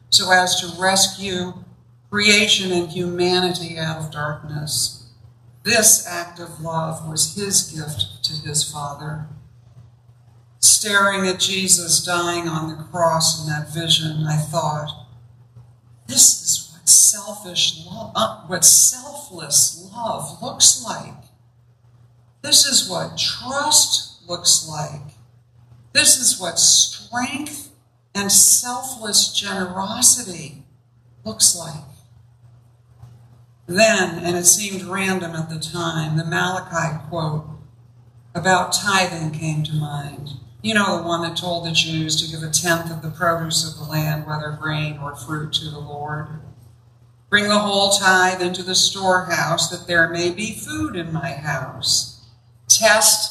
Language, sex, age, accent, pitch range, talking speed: English, female, 60-79, American, 130-180 Hz, 130 wpm